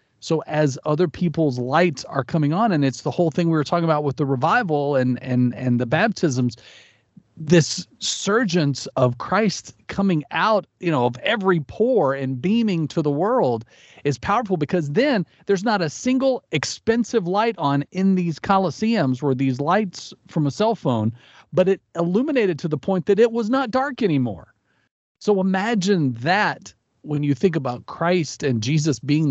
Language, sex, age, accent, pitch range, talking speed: English, male, 40-59, American, 135-185 Hz, 175 wpm